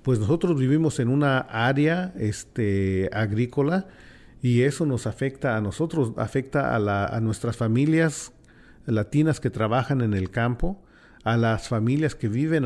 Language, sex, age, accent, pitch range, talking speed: English, male, 40-59, Mexican, 110-135 Hz, 135 wpm